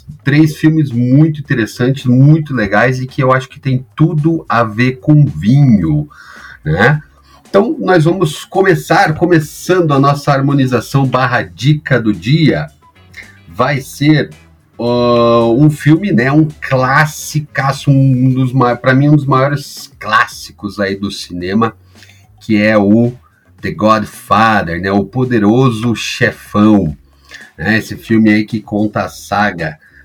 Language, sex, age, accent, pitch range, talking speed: Portuguese, male, 40-59, Brazilian, 100-145 Hz, 130 wpm